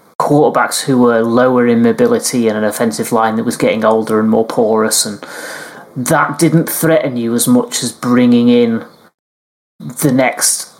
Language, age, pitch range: English, 30-49, 115-135 Hz